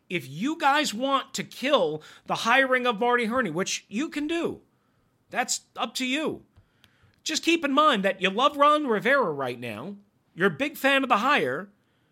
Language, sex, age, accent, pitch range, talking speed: English, male, 40-59, American, 170-255 Hz, 185 wpm